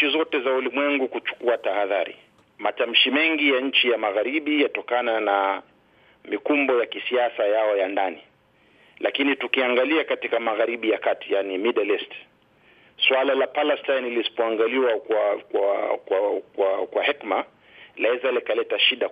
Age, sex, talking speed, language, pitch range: 40-59, male, 125 wpm, Swahili, 115-160 Hz